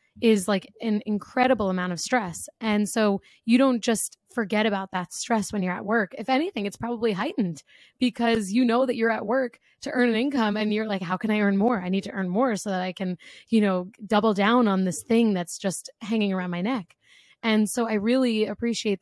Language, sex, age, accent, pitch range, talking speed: English, female, 20-39, American, 190-230 Hz, 225 wpm